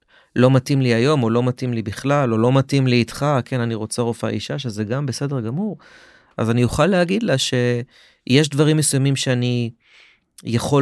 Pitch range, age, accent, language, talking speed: 115-145 Hz, 30-49, native, Hebrew, 185 wpm